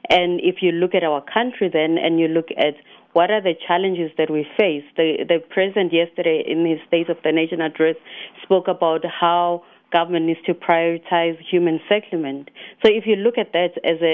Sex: female